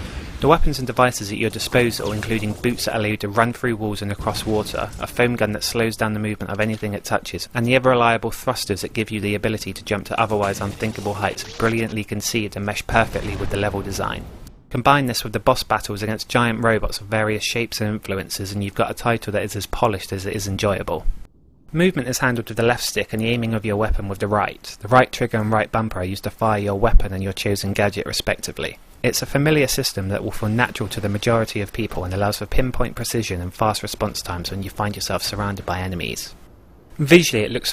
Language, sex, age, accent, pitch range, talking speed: English, male, 30-49, British, 100-115 Hz, 235 wpm